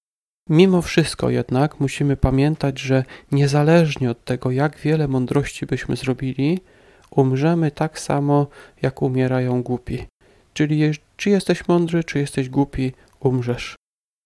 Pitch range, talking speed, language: 130-155 Hz, 120 wpm, Polish